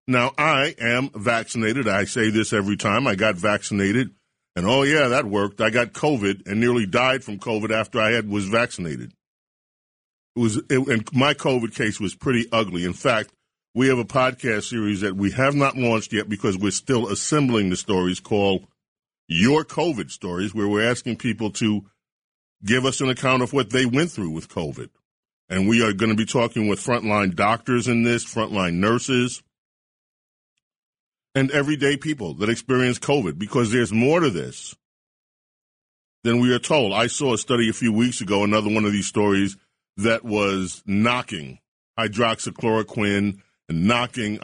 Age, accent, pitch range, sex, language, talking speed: 40-59, American, 105-125 Hz, male, English, 170 wpm